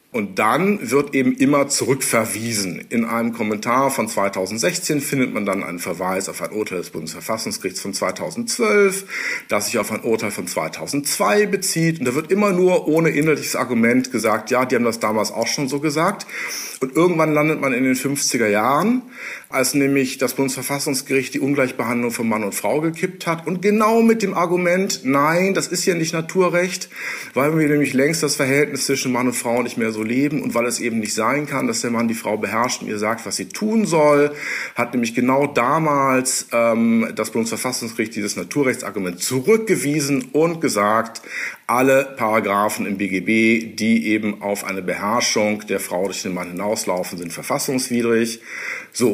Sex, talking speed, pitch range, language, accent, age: male, 175 wpm, 115-160 Hz, German, German, 50-69